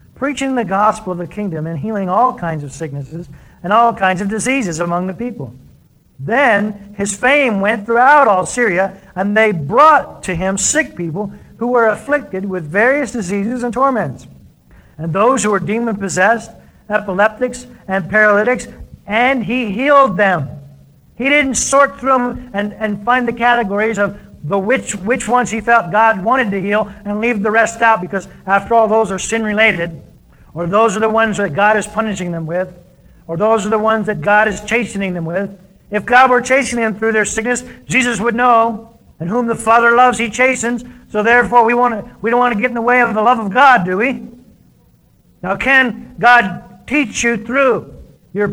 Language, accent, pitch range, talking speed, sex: English, American, 190-240 Hz, 190 wpm, male